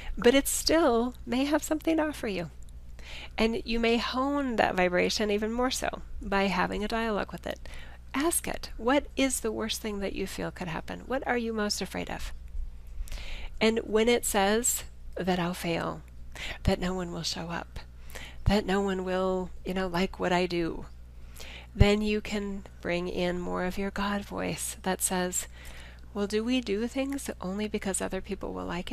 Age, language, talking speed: 40-59, English, 185 wpm